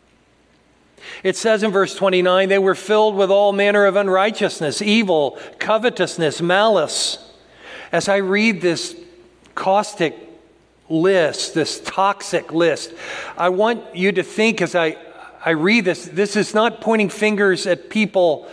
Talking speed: 135 wpm